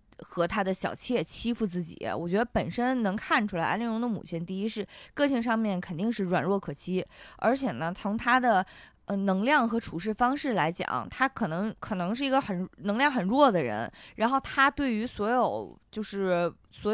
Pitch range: 180-245 Hz